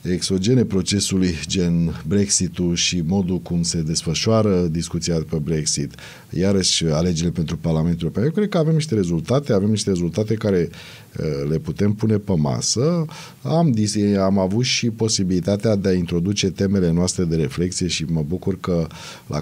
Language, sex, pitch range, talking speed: Romanian, male, 80-95 Hz, 155 wpm